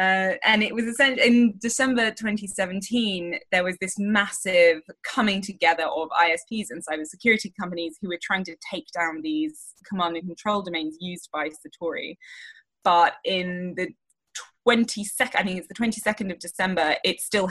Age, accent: 20-39, British